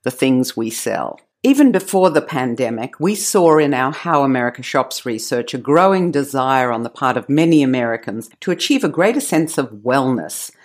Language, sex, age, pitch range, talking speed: English, female, 50-69, 130-175 Hz, 180 wpm